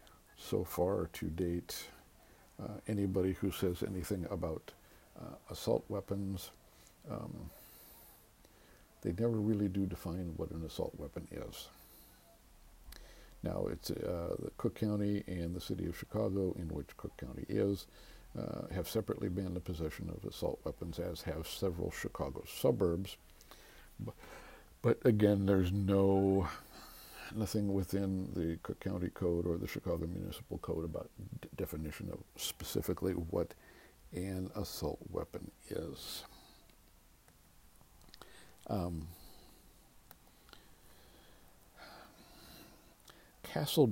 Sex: male